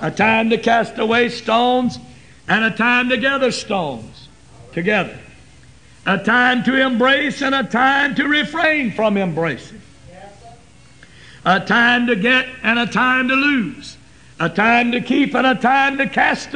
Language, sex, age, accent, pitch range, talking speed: English, male, 60-79, American, 210-270 Hz, 150 wpm